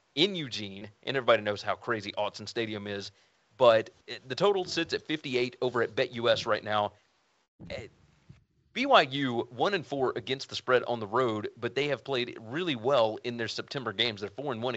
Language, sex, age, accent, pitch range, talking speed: English, male, 30-49, American, 115-140 Hz, 185 wpm